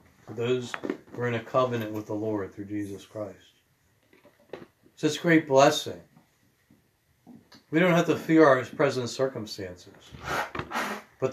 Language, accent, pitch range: English, American, 100-135 Hz